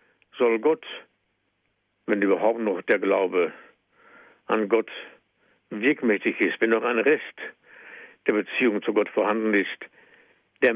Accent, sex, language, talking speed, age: German, male, German, 125 wpm, 60-79